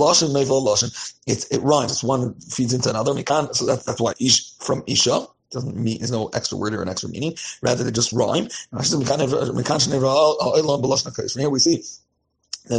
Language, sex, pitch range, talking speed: English, male, 125-145 Hz, 160 wpm